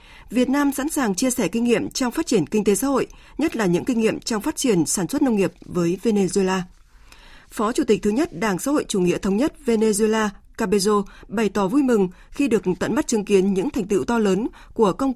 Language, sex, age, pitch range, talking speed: Vietnamese, female, 20-39, 190-245 Hz, 240 wpm